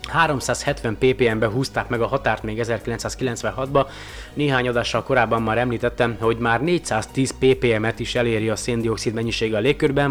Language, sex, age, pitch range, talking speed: Hungarian, male, 30-49, 115-135 Hz, 140 wpm